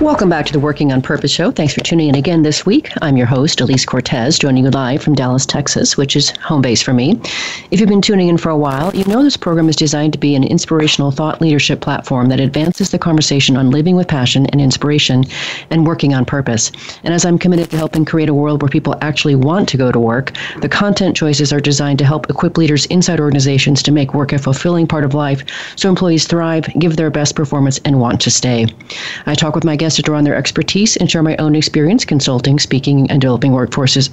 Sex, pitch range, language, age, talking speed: female, 140-165 Hz, English, 40-59, 235 wpm